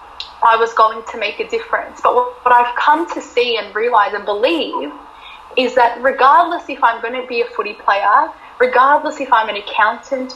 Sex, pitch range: female, 230-290 Hz